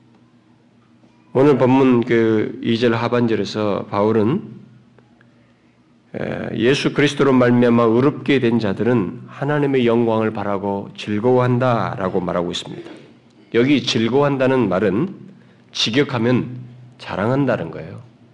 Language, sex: Korean, male